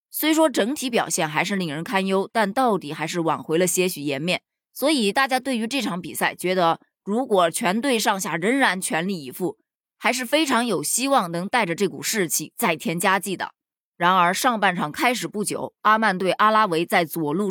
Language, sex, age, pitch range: Chinese, female, 20-39, 170-230 Hz